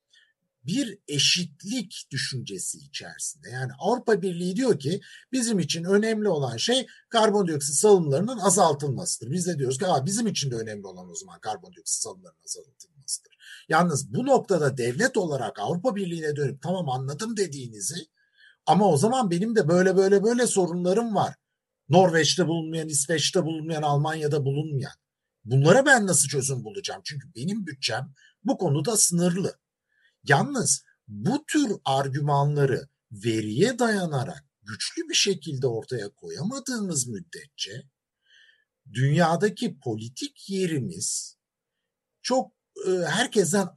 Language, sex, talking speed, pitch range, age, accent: Turkish, male, 120 wpm, 140-205 Hz, 50-69, native